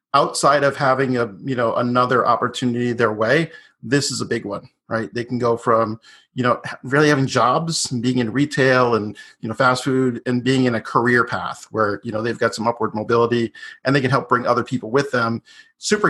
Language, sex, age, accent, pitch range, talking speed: English, male, 40-59, American, 120-145 Hz, 215 wpm